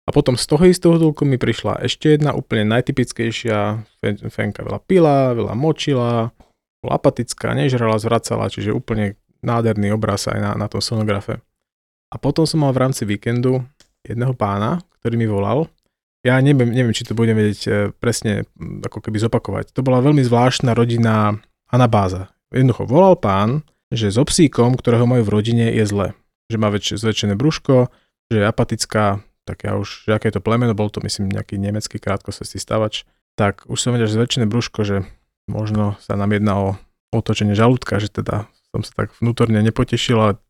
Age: 20-39